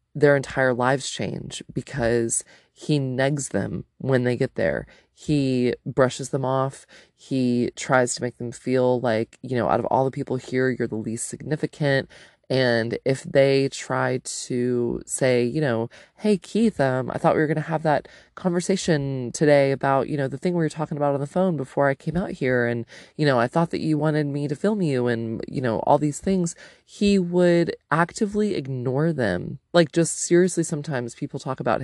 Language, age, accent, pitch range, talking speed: English, 20-39, American, 130-160 Hz, 195 wpm